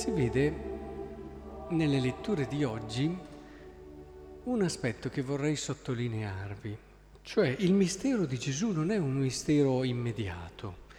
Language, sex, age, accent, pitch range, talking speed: Italian, male, 40-59, native, 125-175 Hz, 115 wpm